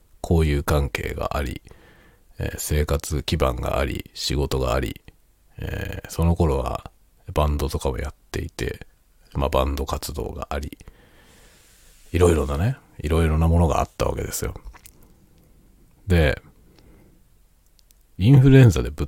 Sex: male